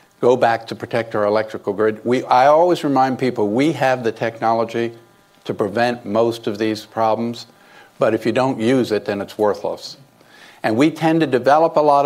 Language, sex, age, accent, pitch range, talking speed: English, male, 50-69, American, 110-125 Hz, 185 wpm